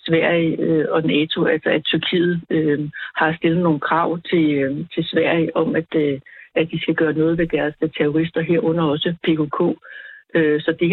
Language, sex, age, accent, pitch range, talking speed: Danish, female, 60-79, native, 155-175 Hz, 175 wpm